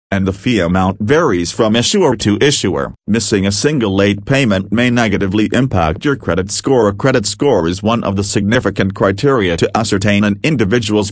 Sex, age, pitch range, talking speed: male, 40-59, 95-120 Hz, 180 wpm